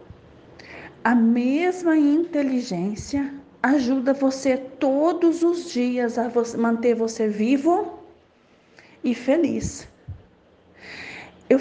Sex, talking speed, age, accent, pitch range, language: female, 85 wpm, 40-59, Brazilian, 215-280 Hz, Portuguese